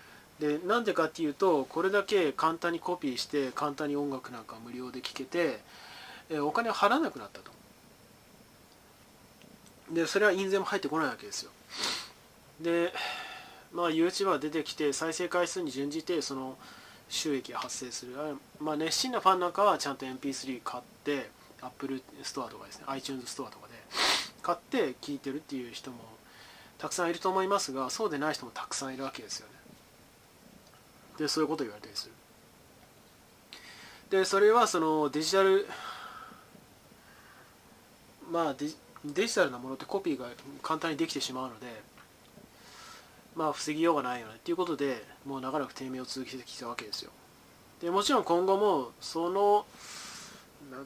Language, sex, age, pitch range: Japanese, male, 20-39, 135-180 Hz